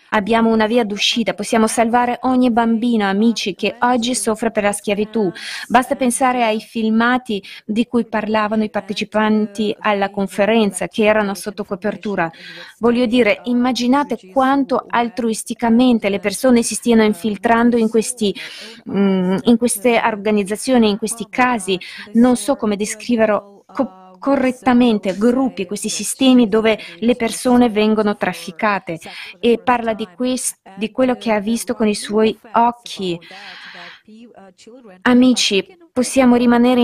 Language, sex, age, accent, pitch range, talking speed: Italian, female, 20-39, native, 205-240 Hz, 120 wpm